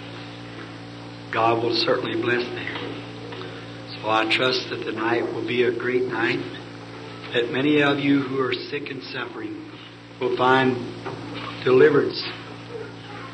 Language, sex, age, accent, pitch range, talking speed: English, male, 60-79, American, 110-155 Hz, 120 wpm